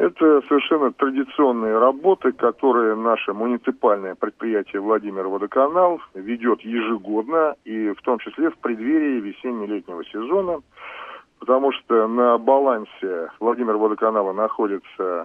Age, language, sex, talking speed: 40-59, Russian, male, 105 wpm